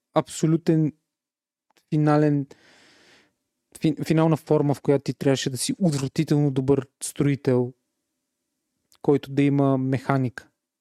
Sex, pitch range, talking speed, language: male, 135-160 Hz, 100 wpm, Bulgarian